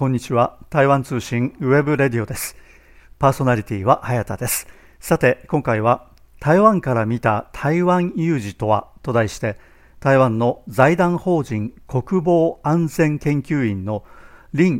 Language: Japanese